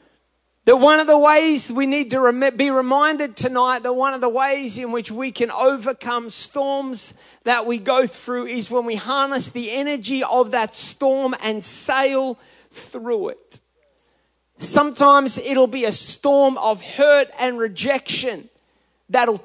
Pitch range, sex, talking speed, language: 240-280 Hz, male, 150 wpm, English